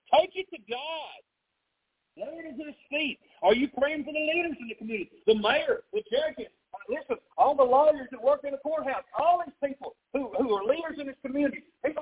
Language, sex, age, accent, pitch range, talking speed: English, male, 50-69, American, 220-320 Hz, 215 wpm